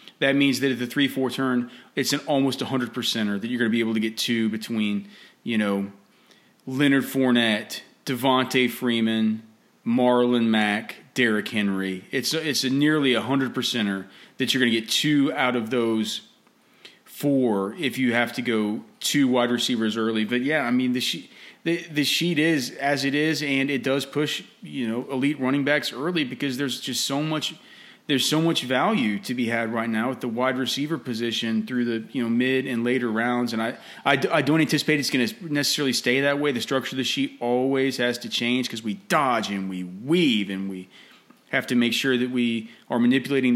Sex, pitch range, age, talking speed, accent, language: male, 115-145 Hz, 30-49, 205 wpm, American, English